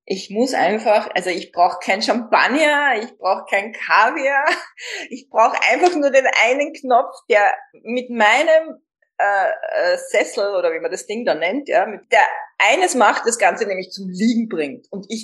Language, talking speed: German, 160 wpm